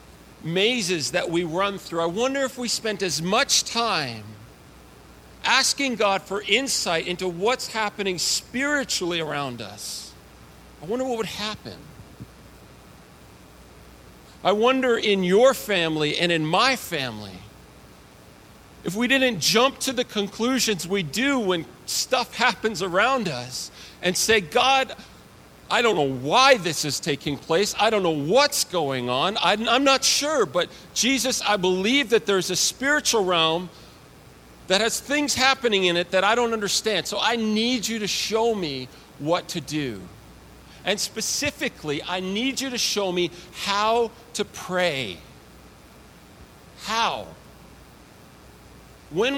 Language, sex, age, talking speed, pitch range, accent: English, male, 40-59, 135 wpm, 155-235 Hz, American